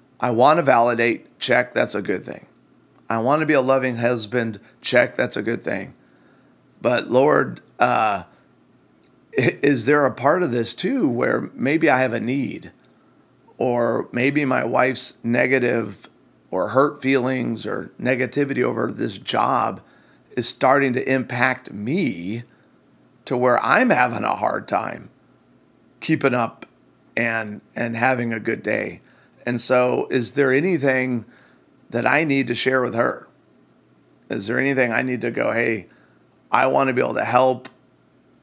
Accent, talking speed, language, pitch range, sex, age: American, 150 wpm, English, 115-130 Hz, male, 40-59